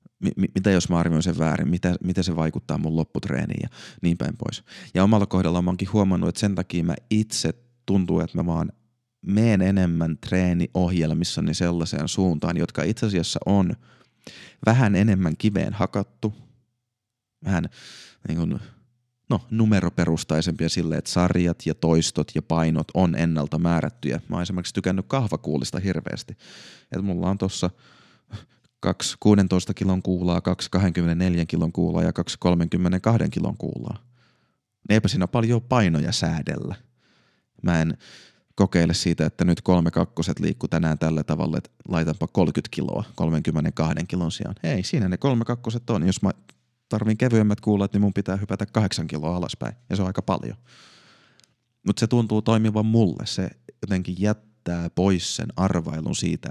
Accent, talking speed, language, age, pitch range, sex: native, 145 wpm, Finnish, 30-49, 85-105 Hz, male